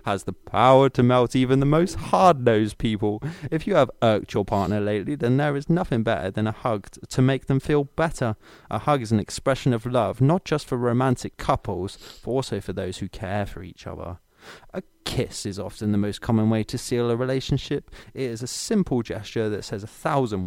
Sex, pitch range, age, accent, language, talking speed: male, 100-130 Hz, 20-39, British, English, 210 wpm